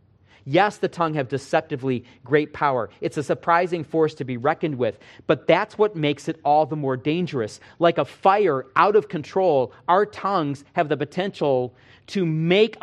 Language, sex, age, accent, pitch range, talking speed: English, male, 40-59, American, 120-175 Hz, 175 wpm